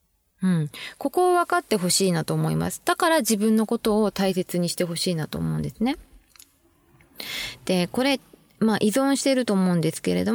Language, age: Japanese, 20-39